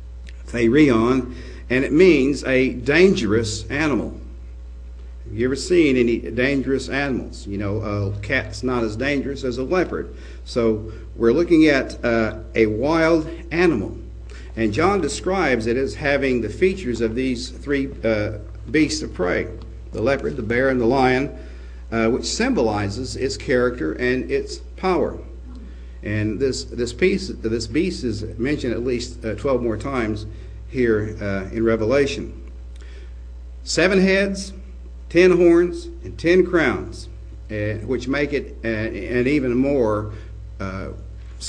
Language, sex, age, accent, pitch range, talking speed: English, male, 50-69, American, 85-130 Hz, 140 wpm